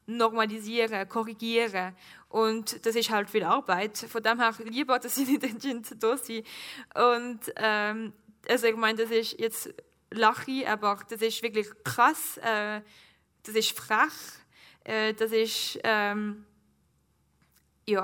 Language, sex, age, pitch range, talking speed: German, female, 10-29, 220-260 Hz, 125 wpm